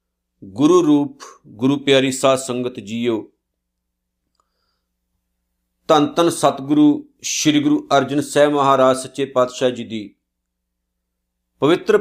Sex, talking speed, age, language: male, 100 wpm, 50-69, Punjabi